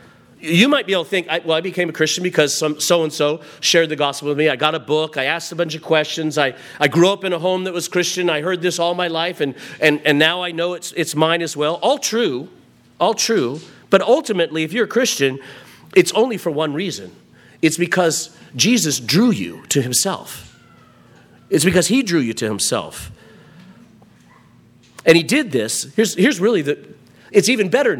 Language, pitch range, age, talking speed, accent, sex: English, 150-190 Hz, 40-59, 205 wpm, American, male